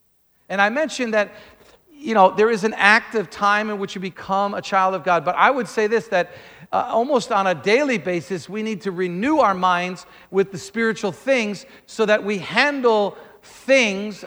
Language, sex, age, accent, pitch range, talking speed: English, male, 50-69, American, 185-245 Hz, 200 wpm